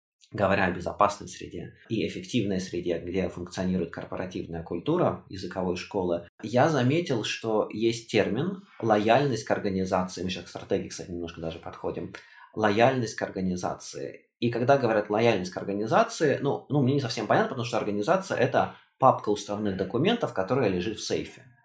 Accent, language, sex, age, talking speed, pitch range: native, Russian, male, 20-39, 150 wpm, 95-125 Hz